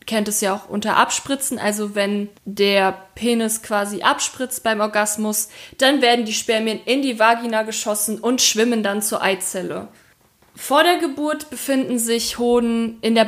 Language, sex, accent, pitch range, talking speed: German, female, German, 215-250 Hz, 160 wpm